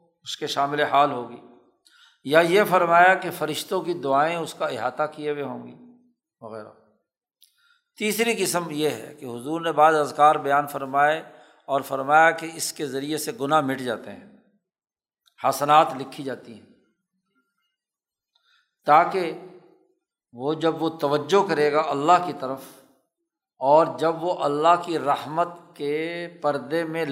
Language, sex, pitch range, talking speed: Urdu, male, 140-185 Hz, 145 wpm